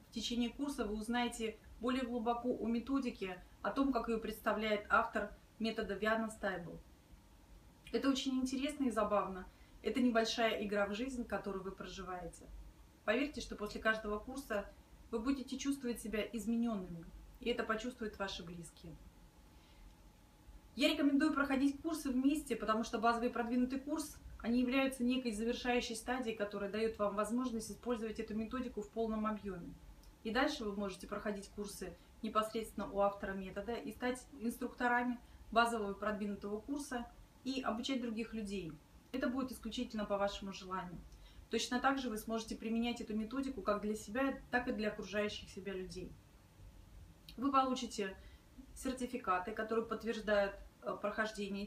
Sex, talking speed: female, 140 wpm